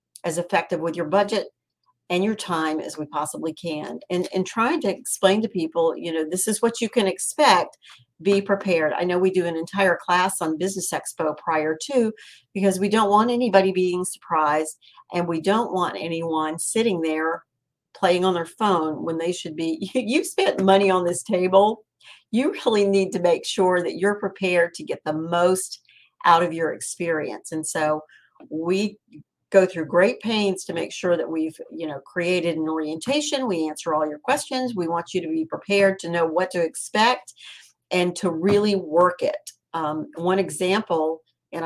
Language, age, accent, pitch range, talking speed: English, 50-69, American, 165-200 Hz, 185 wpm